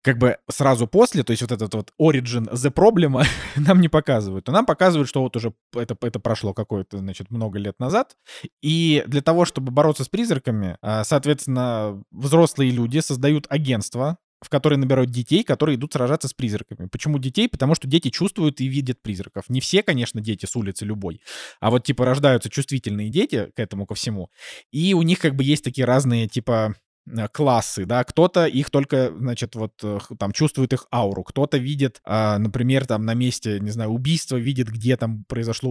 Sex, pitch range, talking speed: male, 110-145 Hz, 185 wpm